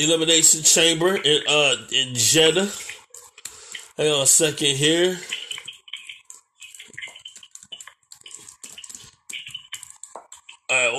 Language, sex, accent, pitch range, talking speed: English, male, American, 160-210 Hz, 65 wpm